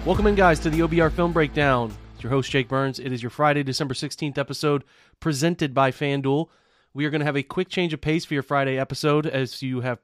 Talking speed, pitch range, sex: 240 wpm, 135-155 Hz, male